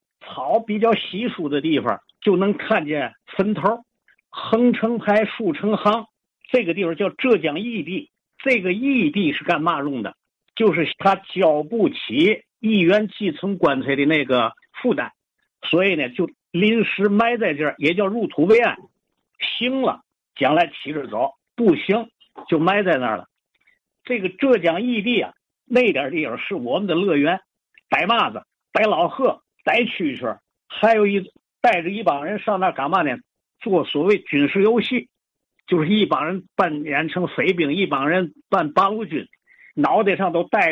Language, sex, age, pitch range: Chinese, male, 50-69, 175-230 Hz